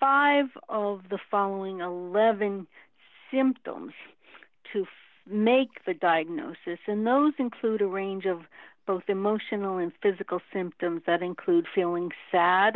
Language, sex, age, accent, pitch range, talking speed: English, female, 60-79, American, 180-260 Hz, 120 wpm